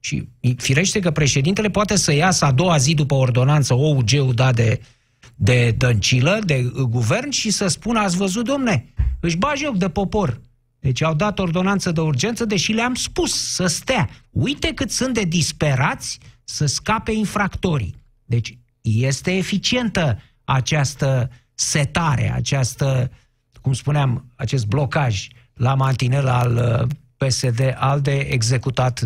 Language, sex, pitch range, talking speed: Romanian, male, 125-180 Hz, 135 wpm